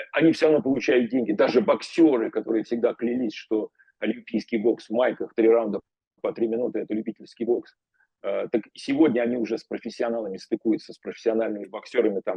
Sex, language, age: male, Russian, 40-59